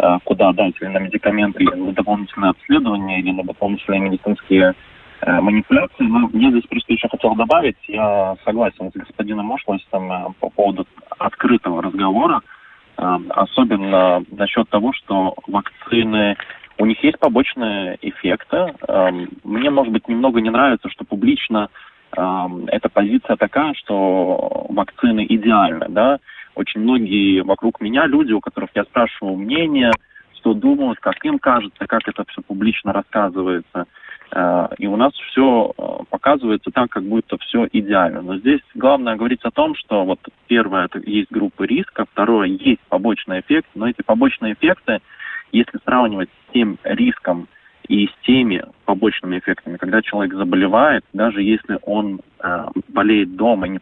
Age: 20-39